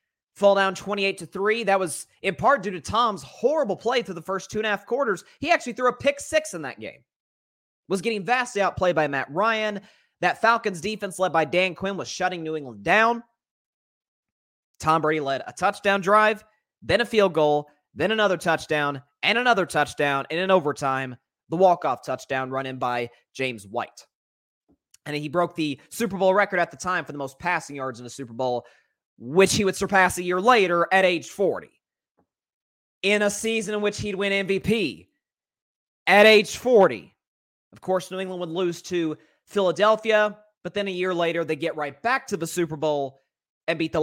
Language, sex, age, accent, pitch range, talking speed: English, male, 20-39, American, 140-205 Hz, 190 wpm